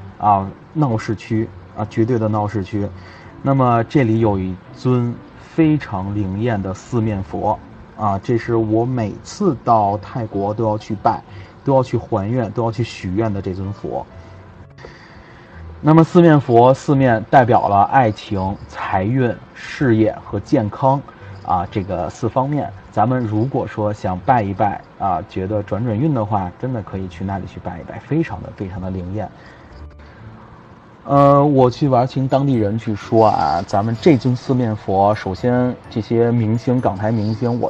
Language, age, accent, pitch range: Chinese, 30-49, native, 100-125 Hz